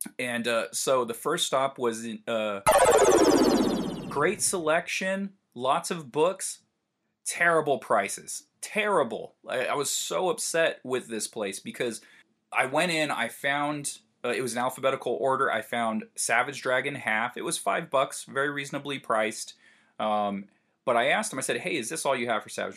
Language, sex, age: English, male, 30-49